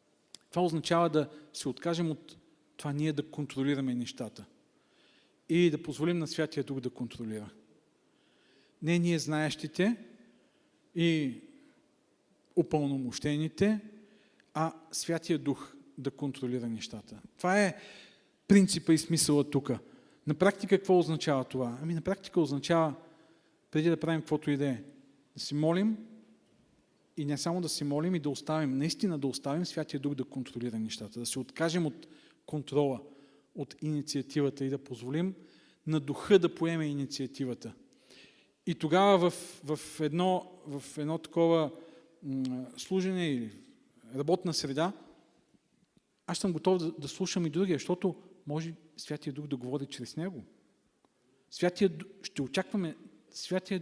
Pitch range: 140-175 Hz